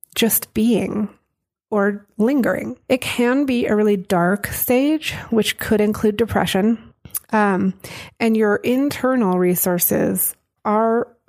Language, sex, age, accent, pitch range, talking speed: English, female, 30-49, American, 185-225 Hz, 110 wpm